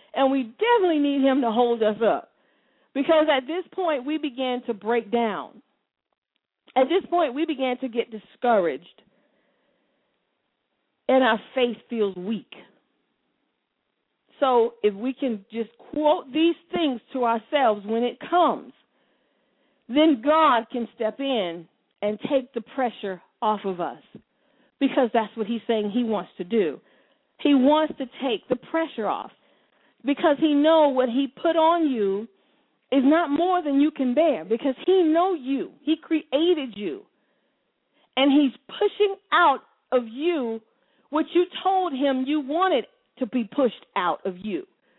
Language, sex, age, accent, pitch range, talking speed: English, female, 50-69, American, 235-310 Hz, 150 wpm